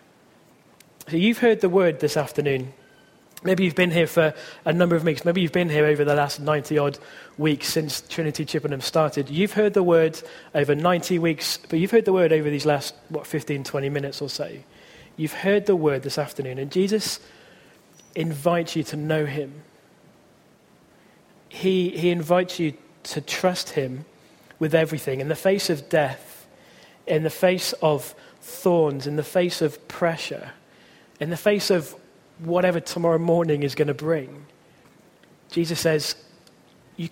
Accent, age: British, 30-49